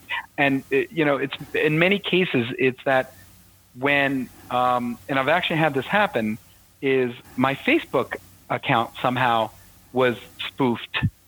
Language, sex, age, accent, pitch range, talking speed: English, male, 40-59, American, 120-150 Hz, 130 wpm